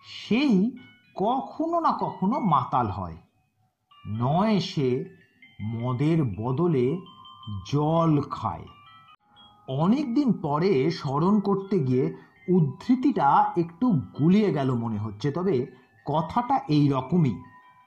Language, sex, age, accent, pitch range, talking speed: Bengali, male, 50-69, native, 125-195 Hz, 90 wpm